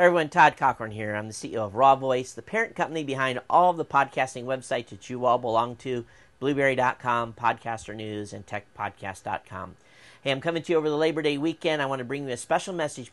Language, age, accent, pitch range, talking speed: English, 50-69, American, 115-155 Hz, 215 wpm